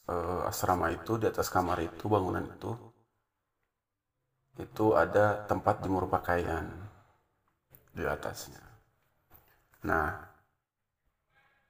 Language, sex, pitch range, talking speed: Indonesian, male, 90-110 Hz, 80 wpm